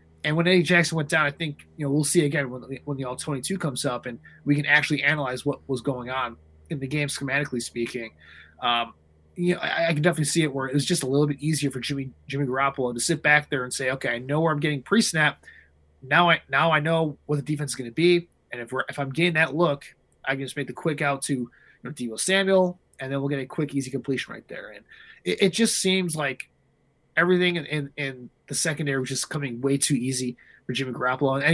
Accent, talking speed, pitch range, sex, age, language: American, 250 wpm, 130-160 Hz, male, 20-39, English